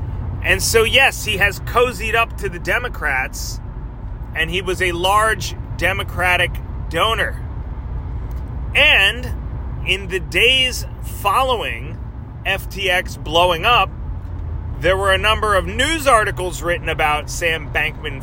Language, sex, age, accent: English, male, 30-49, American